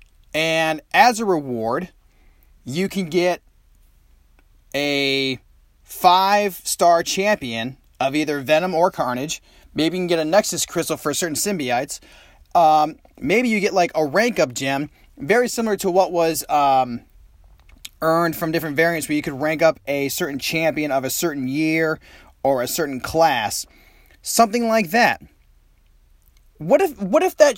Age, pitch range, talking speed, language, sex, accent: 30-49, 140-195 Hz, 145 wpm, English, male, American